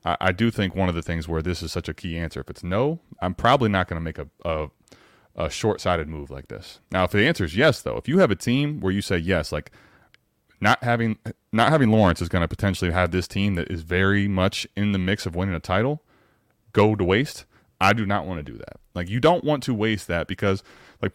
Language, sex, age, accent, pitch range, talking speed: English, male, 30-49, American, 85-110 Hz, 250 wpm